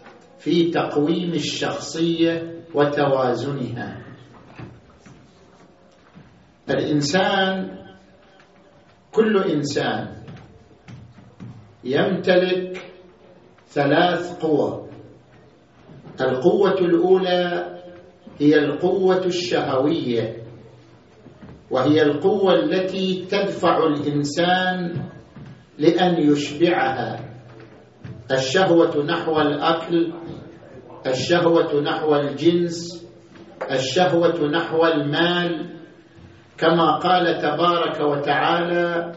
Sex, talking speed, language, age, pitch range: male, 55 wpm, Arabic, 50-69, 145-175 Hz